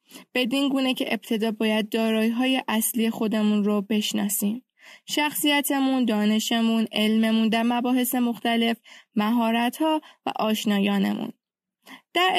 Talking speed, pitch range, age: 105 wpm, 215-265 Hz, 10-29